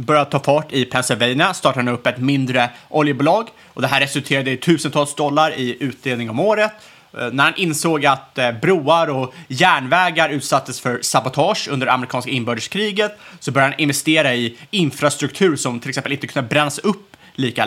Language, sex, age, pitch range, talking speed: Swedish, male, 30-49, 125-165 Hz, 170 wpm